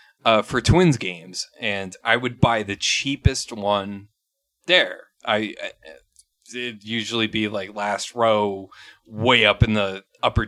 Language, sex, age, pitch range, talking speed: English, male, 20-39, 105-130 Hz, 145 wpm